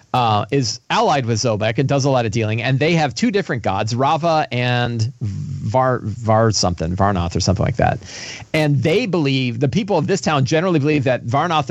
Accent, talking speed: American, 185 wpm